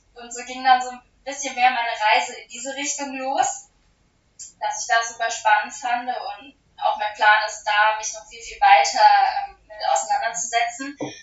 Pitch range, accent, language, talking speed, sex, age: 230-350 Hz, German, German, 180 wpm, female, 10-29